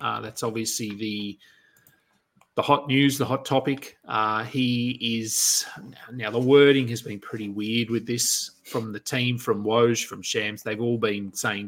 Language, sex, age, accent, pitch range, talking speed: English, male, 30-49, Australian, 110-145 Hz, 175 wpm